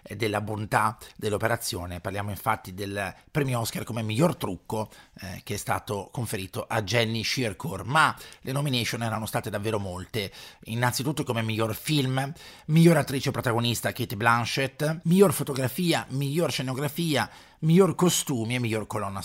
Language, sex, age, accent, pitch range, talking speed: Italian, male, 40-59, native, 110-135 Hz, 140 wpm